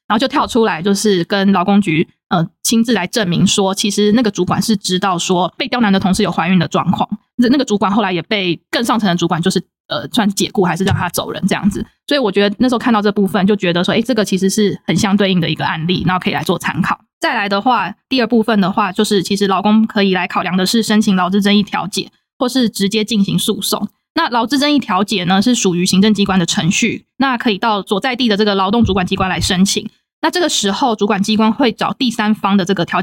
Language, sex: Chinese, female